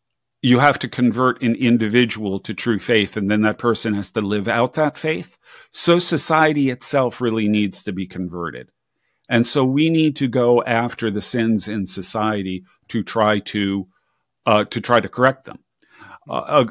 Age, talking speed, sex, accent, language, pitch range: 50-69, 175 wpm, male, American, English, 105-135 Hz